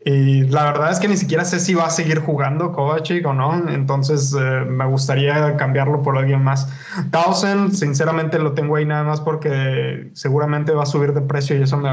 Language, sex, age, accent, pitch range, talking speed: Spanish, male, 20-39, Mexican, 135-155 Hz, 205 wpm